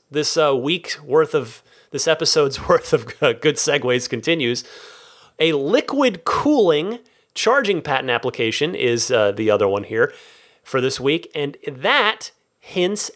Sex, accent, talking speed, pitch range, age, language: male, American, 140 wpm, 135-225 Hz, 30-49, English